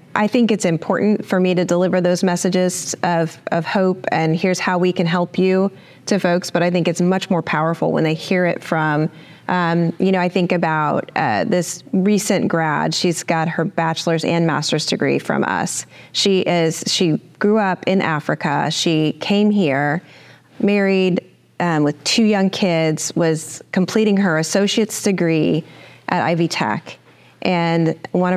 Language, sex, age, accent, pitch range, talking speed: English, female, 30-49, American, 160-190 Hz, 165 wpm